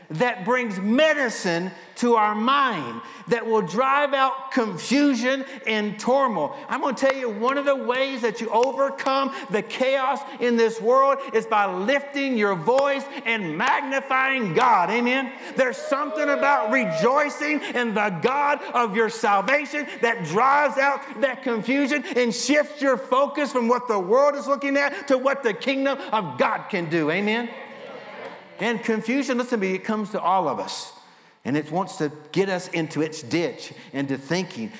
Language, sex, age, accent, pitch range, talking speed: English, male, 50-69, American, 175-265 Hz, 165 wpm